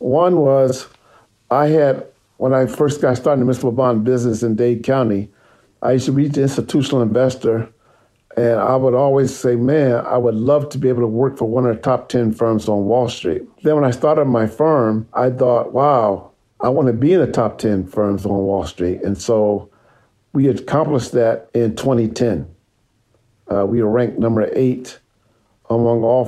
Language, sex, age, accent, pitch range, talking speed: English, male, 50-69, American, 110-130 Hz, 190 wpm